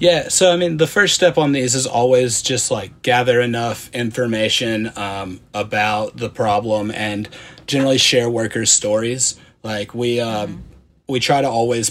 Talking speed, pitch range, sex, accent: 160 wpm, 105-120 Hz, male, American